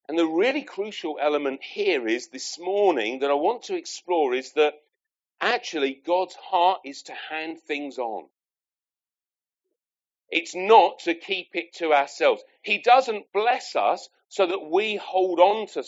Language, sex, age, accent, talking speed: English, male, 40-59, British, 155 wpm